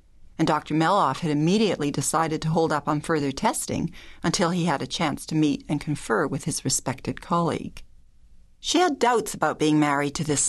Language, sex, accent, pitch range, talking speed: English, female, American, 145-195 Hz, 190 wpm